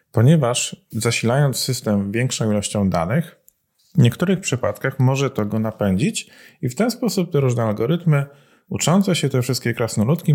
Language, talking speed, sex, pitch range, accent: Polish, 145 wpm, male, 110-170 Hz, native